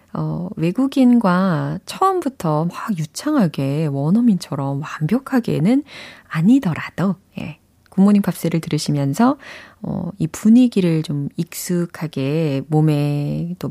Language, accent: Korean, native